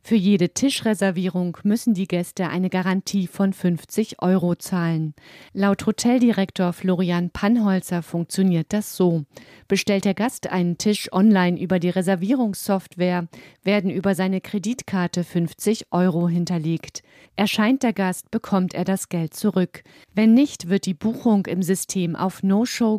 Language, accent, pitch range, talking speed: German, German, 175-205 Hz, 135 wpm